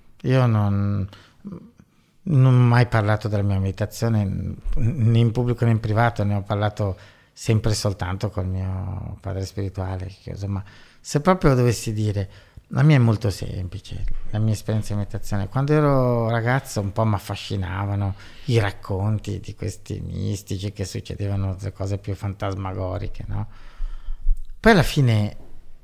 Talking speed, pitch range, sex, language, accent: 145 wpm, 100-125 Hz, male, Italian, native